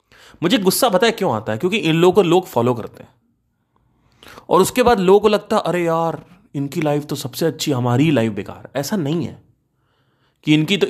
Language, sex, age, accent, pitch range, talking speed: Hindi, male, 30-49, native, 130-185 Hz, 150 wpm